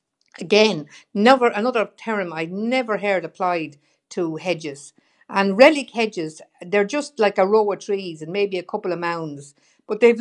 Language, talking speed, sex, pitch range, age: English, 165 wpm, female, 160-215 Hz, 60-79